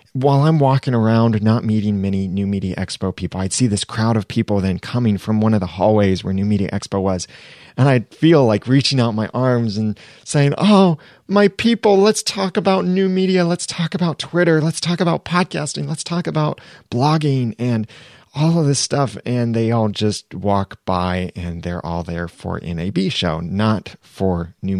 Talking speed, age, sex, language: 195 wpm, 30-49, male, English